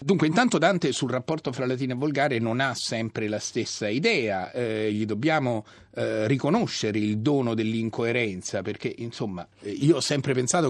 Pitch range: 110-145 Hz